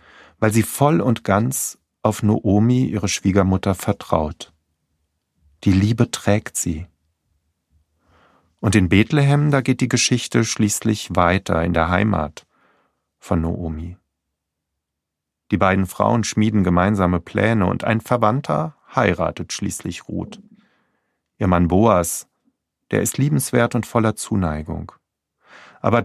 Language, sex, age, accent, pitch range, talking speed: German, male, 40-59, German, 85-110 Hz, 115 wpm